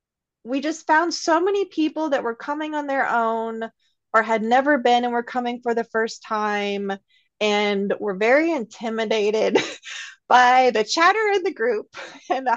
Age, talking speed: 30-49, 165 wpm